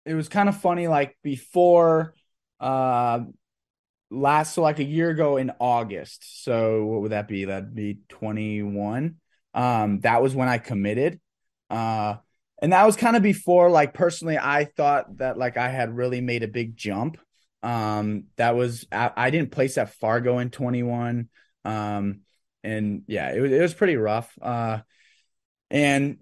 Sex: male